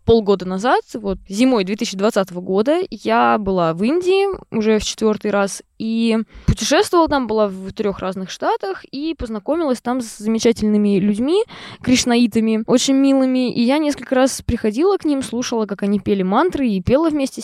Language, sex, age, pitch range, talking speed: Russian, female, 20-39, 200-260 Hz, 160 wpm